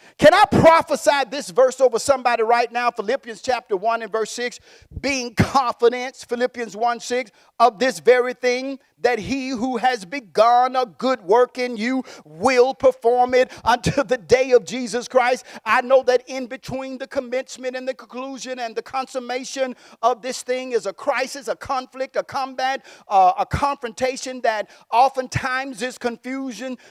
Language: English